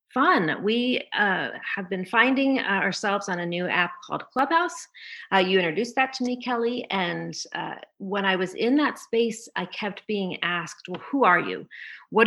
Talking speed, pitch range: 180 wpm, 175-230 Hz